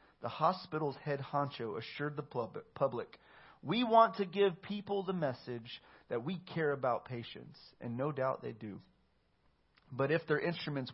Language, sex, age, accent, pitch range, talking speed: English, male, 40-59, American, 120-160 Hz, 155 wpm